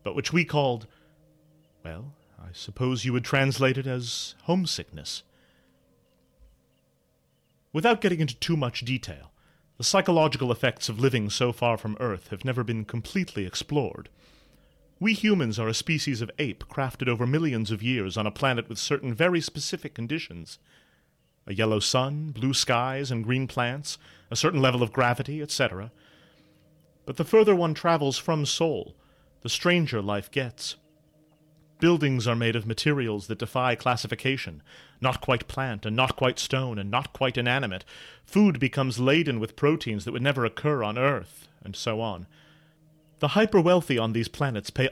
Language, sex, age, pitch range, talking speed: English, male, 30-49, 110-150 Hz, 155 wpm